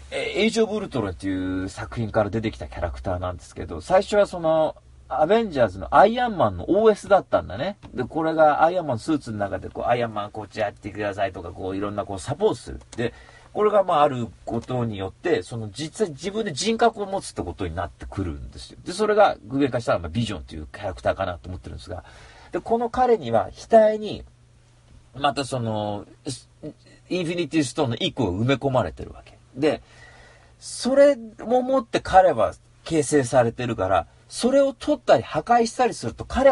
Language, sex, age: Japanese, male, 40-59